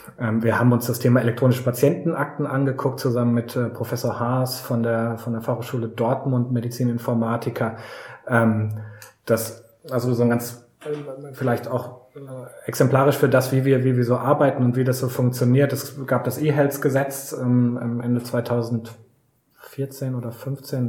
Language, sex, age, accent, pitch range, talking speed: German, male, 20-39, German, 115-130 Hz, 145 wpm